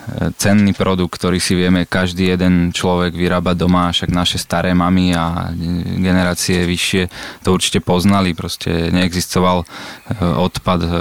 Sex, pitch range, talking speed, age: male, 90-100 Hz, 125 wpm, 20-39